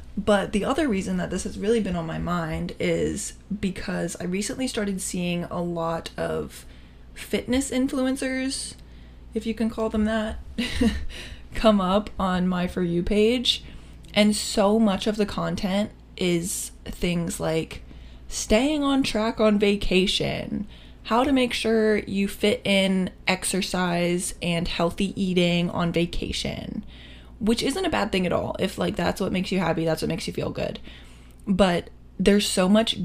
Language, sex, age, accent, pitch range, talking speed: English, female, 20-39, American, 170-215 Hz, 160 wpm